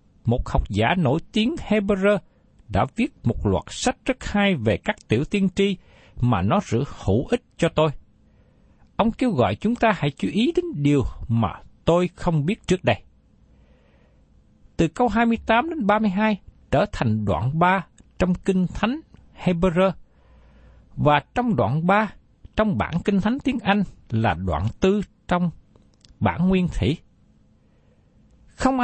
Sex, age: male, 60-79